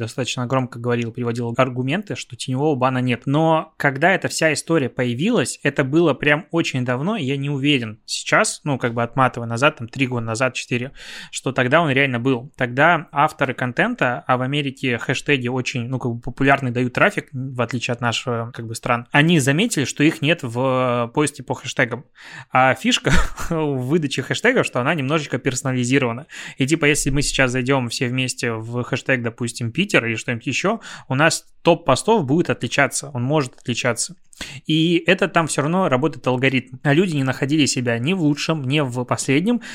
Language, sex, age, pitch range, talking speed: Russian, male, 20-39, 125-155 Hz, 185 wpm